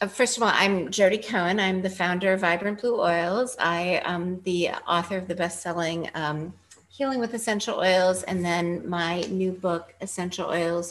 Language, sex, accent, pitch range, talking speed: English, female, American, 160-190 Hz, 180 wpm